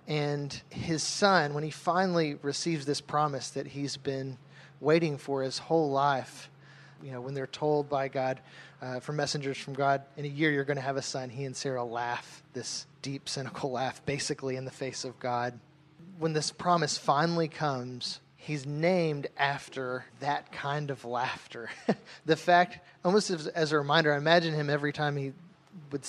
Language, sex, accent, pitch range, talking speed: English, male, American, 135-155 Hz, 180 wpm